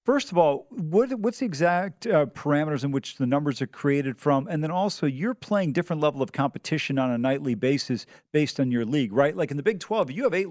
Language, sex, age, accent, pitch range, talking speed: English, male, 40-59, American, 150-190 Hz, 240 wpm